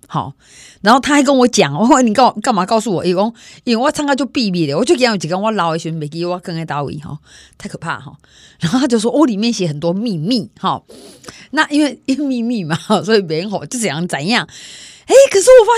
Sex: female